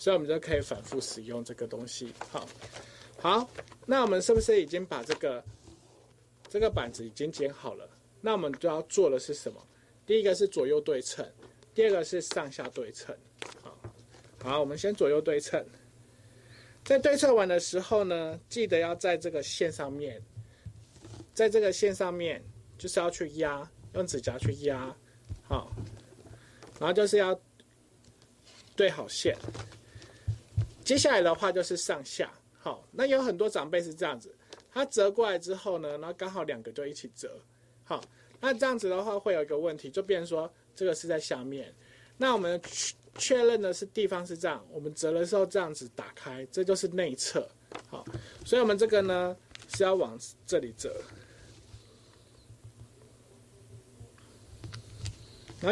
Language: Chinese